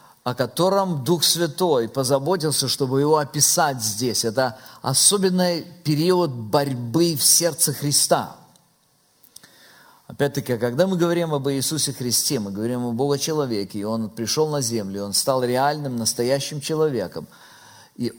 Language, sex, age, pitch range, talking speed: Russian, male, 50-69, 135-180 Hz, 125 wpm